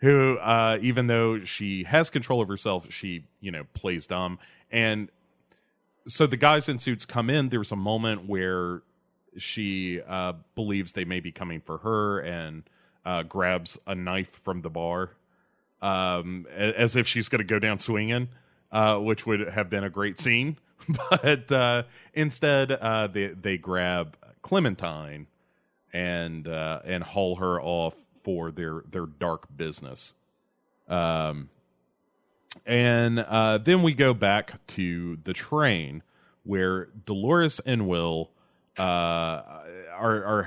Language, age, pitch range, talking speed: English, 30-49, 90-120 Hz, 140 wpm